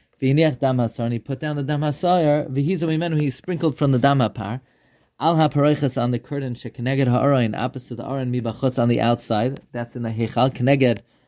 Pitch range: 125-145 Hz